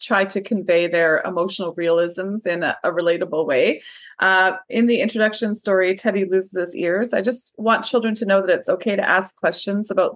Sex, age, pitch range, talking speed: female, 30-49, 180-220 Hz, 195 wpm